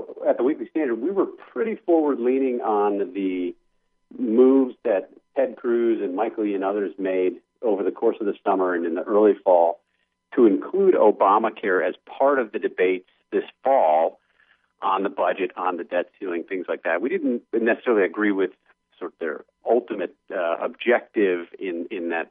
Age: 50-69